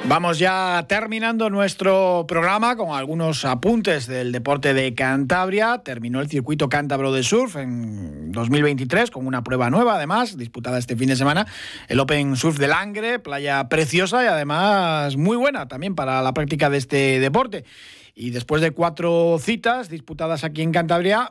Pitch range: 140-200 Hz